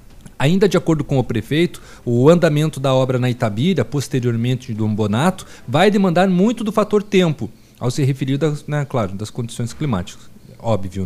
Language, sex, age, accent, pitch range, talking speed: Portuguese, male, 40-59, Brazilian, 125-170 Hz, 165 wpm